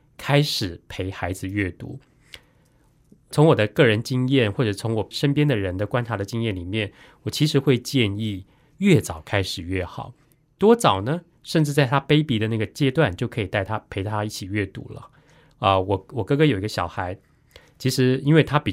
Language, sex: Chinese, male